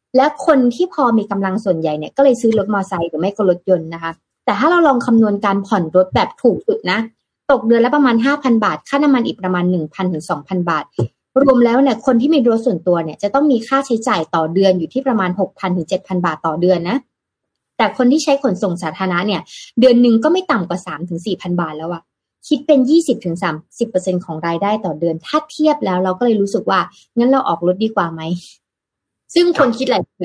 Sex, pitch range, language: female, 180-260 Hz, Thai